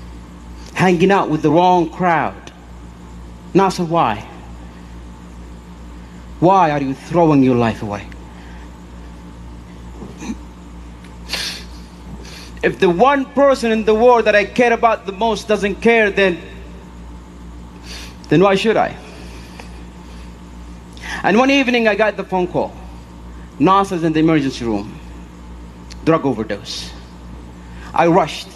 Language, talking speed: Arabic, 110 wpm